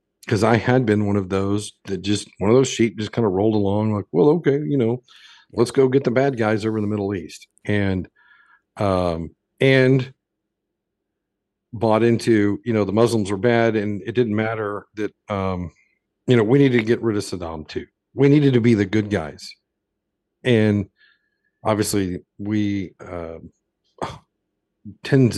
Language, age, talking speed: English, 50-69, 175 wpm